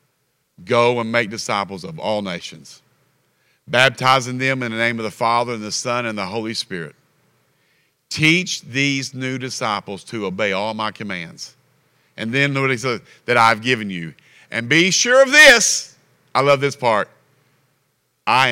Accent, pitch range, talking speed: American, 105-140 Hz, 155 wpm